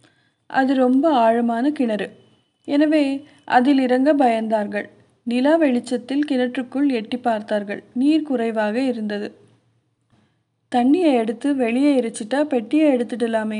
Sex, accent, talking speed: female, native, 95 wpm